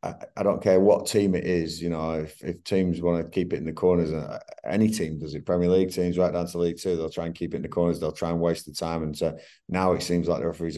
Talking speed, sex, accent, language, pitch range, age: 295 wpm, male, British, English, 80-90 Hz, 30-49